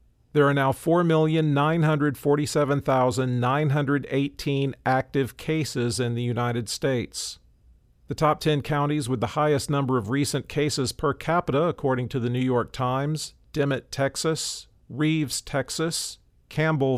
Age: 50-69